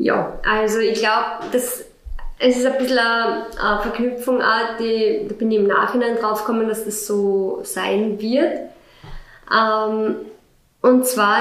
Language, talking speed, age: German, 125 wpm, 20-39